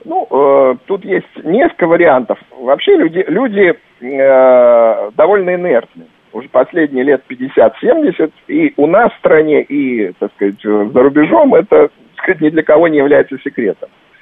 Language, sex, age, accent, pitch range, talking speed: Russian, male, 50-69, native, 110-180 Hz, 150 wpm